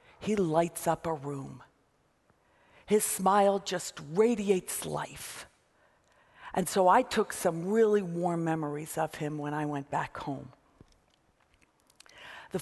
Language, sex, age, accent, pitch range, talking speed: English, female, 50-69, American, 180-240 Hz, 125 wpm